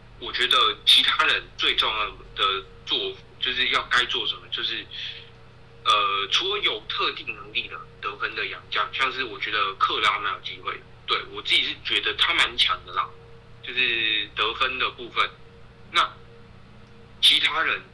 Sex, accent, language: male, native, Chinese